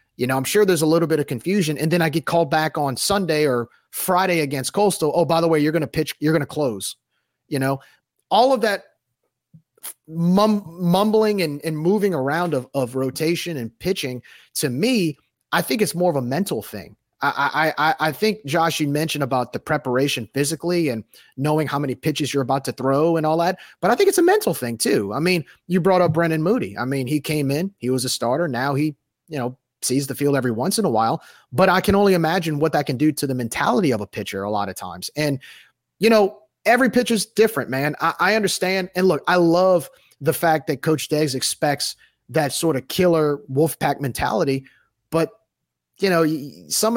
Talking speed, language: 215 wpm, English